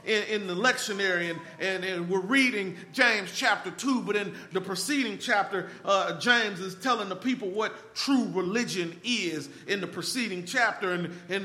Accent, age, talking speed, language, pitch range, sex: American, 40-59, 175 wpm, English, 190-240 Hz, male